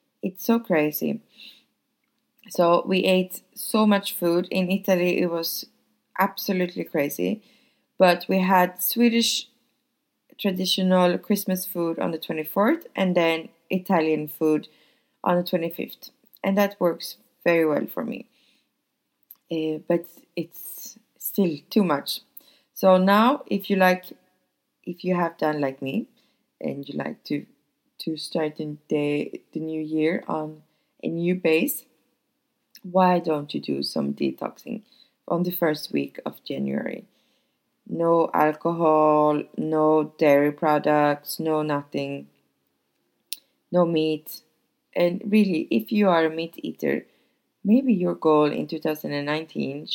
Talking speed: 125 wpm